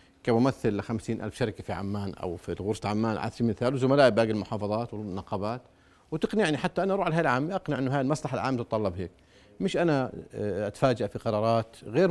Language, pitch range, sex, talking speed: Arabic, 110-150 Hz, male, 185 wpm